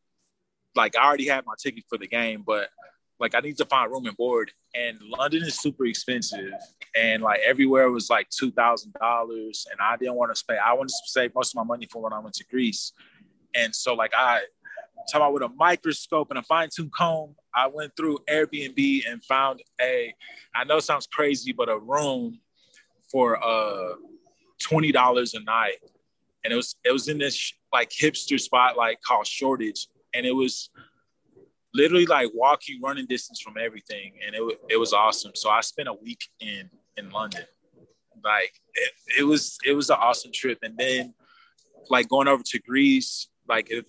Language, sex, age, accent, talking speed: English, male, 20-39, American, 190 wpm